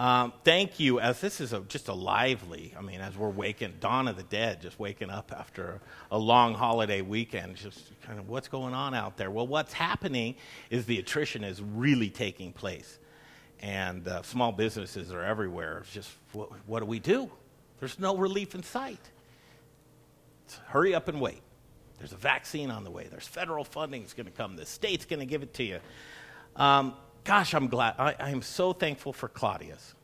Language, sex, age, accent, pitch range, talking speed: English, male, 50-69, American, 110-150 Hz, 200 wpm